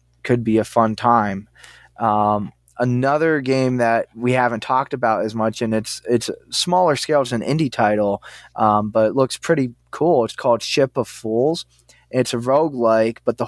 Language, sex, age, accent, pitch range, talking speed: English, male, 20-39, American, 110-130 Hz, 175 wpm